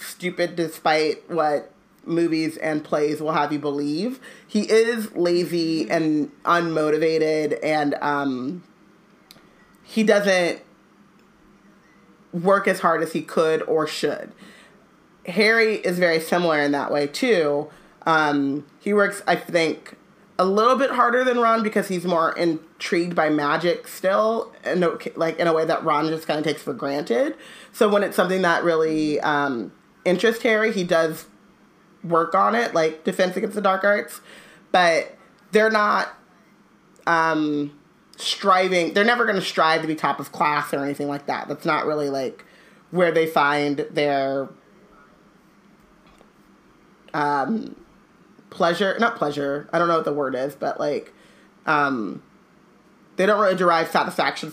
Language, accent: English, American